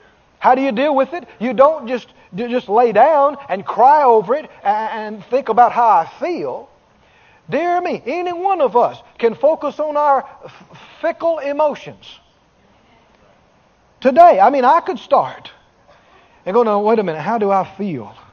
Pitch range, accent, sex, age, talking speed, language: 240-350 Hz, American, male, 40-59, 170 wpm, English